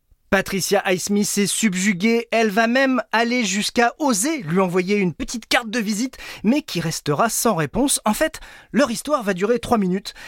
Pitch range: 175-240 Hz